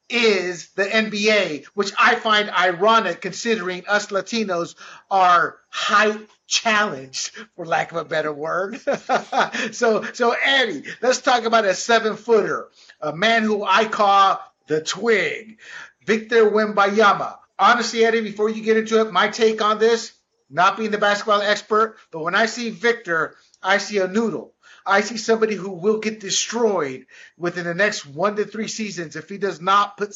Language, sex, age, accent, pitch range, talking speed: English, male, 50-69, American, 175-220 Hz, 160 wpm